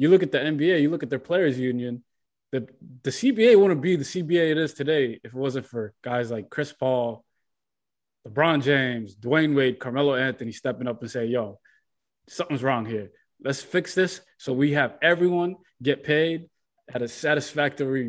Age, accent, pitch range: 20-39, American, 130-190 Hz